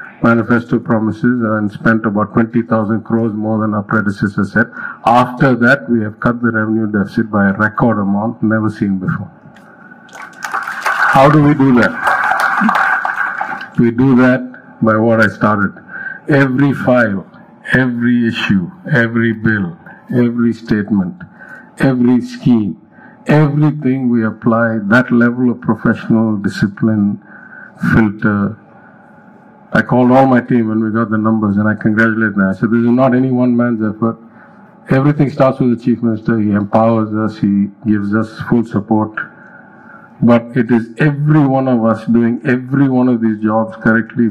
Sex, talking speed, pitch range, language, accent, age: male, 150 wpm, 110-135 Hz, English, Indian, 50-69